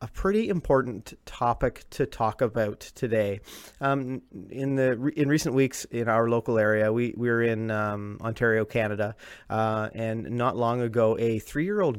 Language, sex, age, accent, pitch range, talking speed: English, male, 30-49, American, 105-125 Hz, 160 wpm